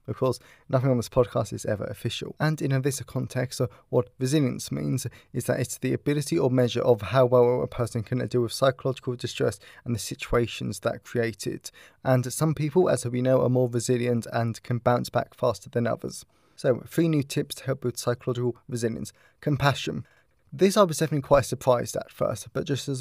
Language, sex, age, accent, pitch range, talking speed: English, male, 20-39, British, 120-140 Hz, 205 wpm